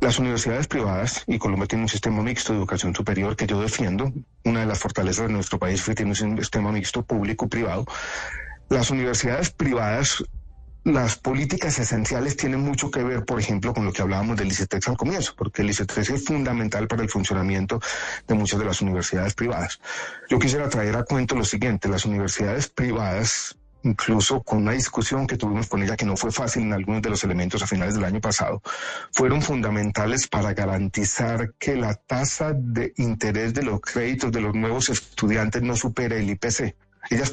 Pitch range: 105-125 Hz